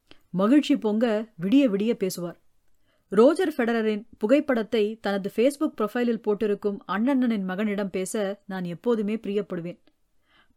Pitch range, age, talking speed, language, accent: 200-255 Hz, 30-49, 100 wpm, Tamil, native